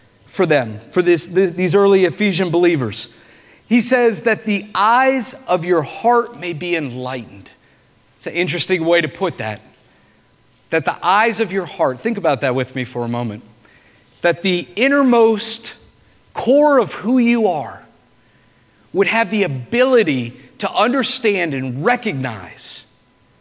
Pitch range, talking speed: 125-200 Hz, 140 wpm